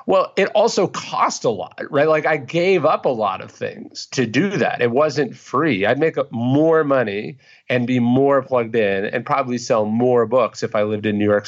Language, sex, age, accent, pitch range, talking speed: English, male, 30-49, American, 105-150 Hz, 220 wpm